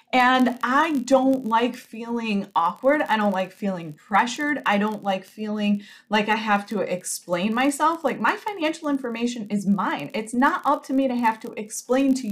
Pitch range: 195-260 Hz